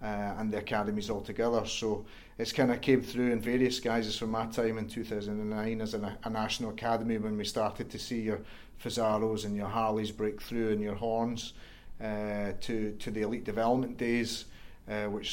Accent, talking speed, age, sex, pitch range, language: British, 190 wpm, 40-59, male, 105-115 Hz, English